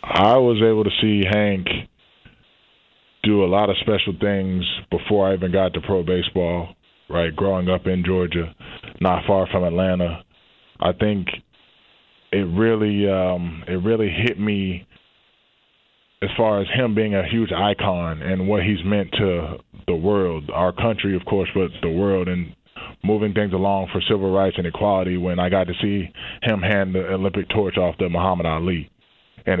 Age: 20-39